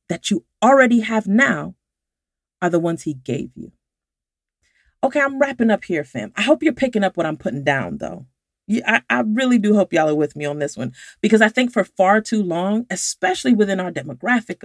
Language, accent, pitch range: English, American, 180-240 Hz